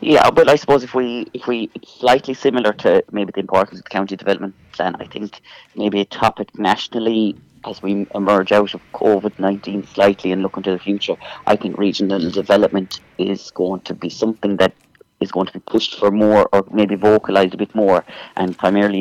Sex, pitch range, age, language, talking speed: male, 95-100 Hz, 30-49, English, 195 wpm